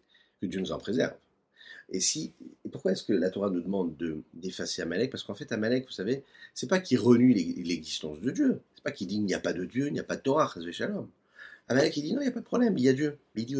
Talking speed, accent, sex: 300 wpm, French, male